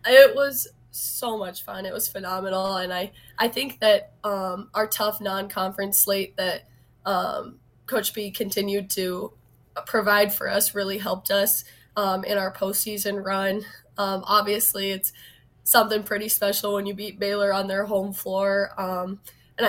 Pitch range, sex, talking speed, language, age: 195-210 Hz, female, 155 wpm, English, 20-39